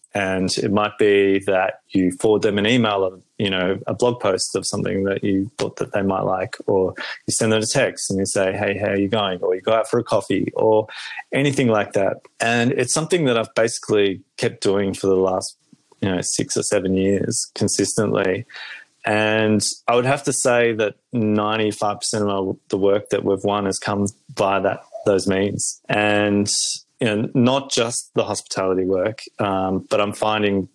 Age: 20-39